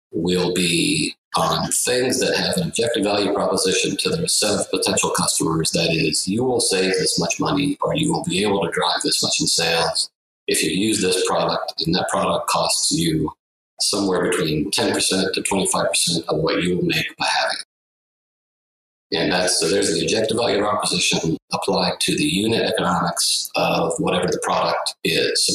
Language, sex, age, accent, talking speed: English, male, 50-69, American, 180 wpm